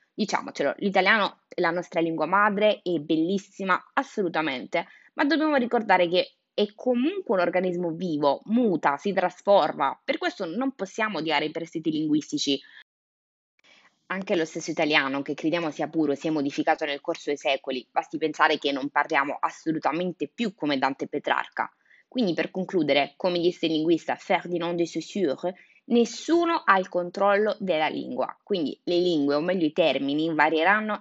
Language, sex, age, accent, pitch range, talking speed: Italian, female, 20-39, native, 155-200 Hz, 155 wpm